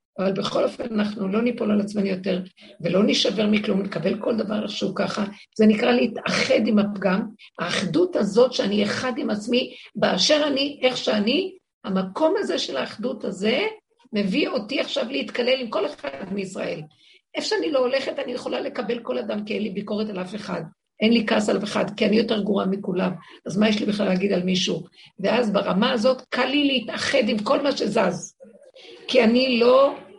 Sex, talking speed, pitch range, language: female, 185 wpm, 200-255 Hz, Hebrew